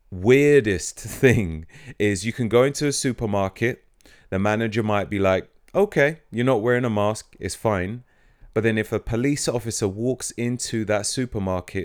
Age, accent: 30-49, British